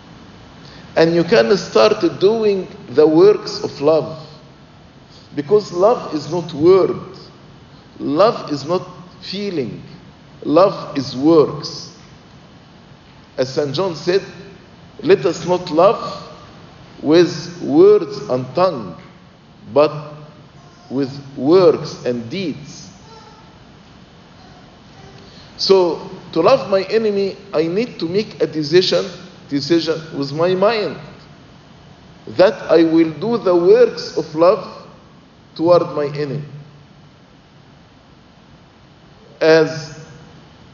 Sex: male